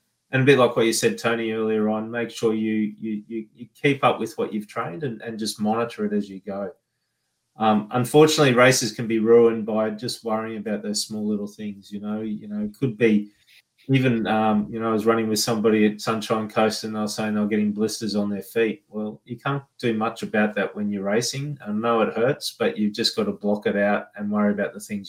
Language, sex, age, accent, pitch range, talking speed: English, male, 20-39, Australian, 105-115 Hz, 240 wpm